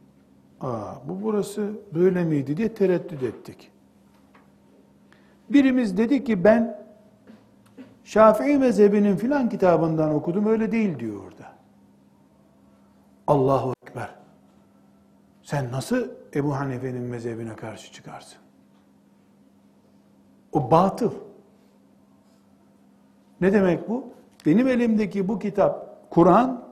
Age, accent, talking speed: 60-79, native, 90 wpm